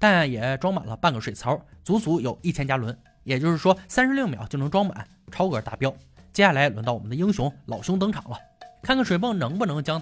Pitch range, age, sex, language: 130-190 Hz, 20-39, male, Chinese